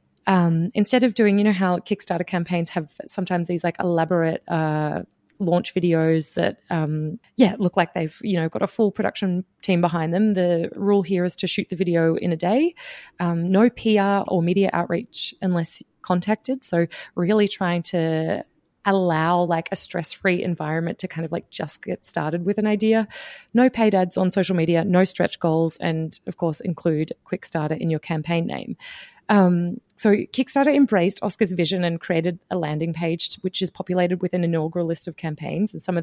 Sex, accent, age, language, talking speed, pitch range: female, Australian, 20-39, English, 185 wpm, 170-210 Hz